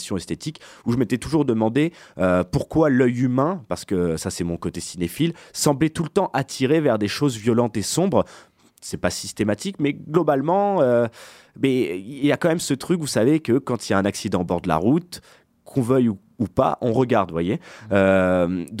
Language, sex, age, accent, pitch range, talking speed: French, male, 20-39, French, 95-130 Hz, 205 wpm